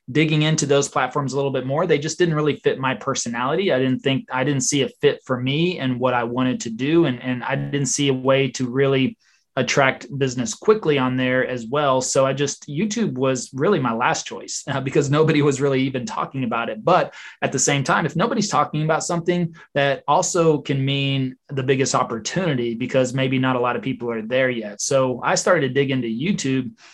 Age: 20-39